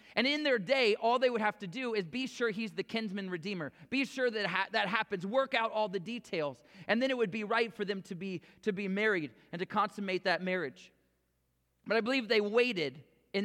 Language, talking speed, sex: English, 225 wpm, male